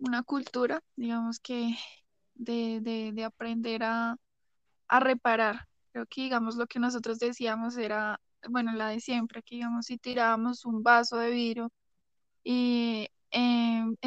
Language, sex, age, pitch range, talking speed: Spanish, female, 10-29, 230-255 Hz, 140 wpm